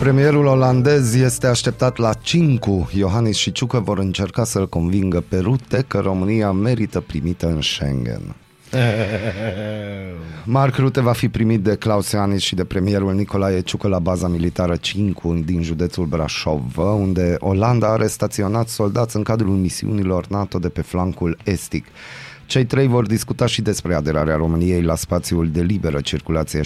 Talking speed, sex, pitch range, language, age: 150 wpm, male, 85-110 Hz, Romanian, 30-49